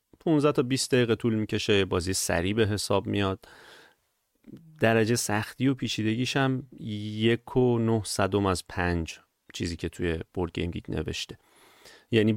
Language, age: Persian, 30-49